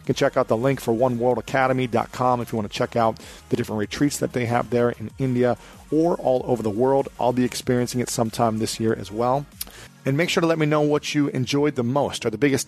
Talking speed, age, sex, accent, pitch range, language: 235 wpm, 40-59, male, American, 110-135 Hz, English